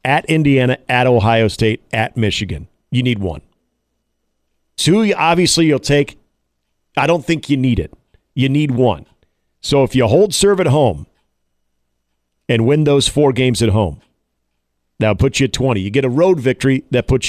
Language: English